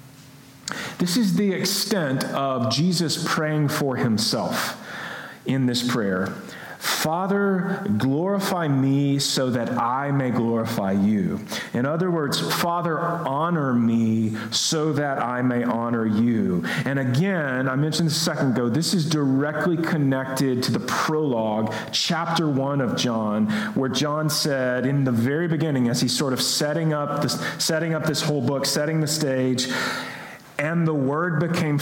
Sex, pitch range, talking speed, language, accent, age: male, 130-170 Hz, 145 wpm, English, American, 40-59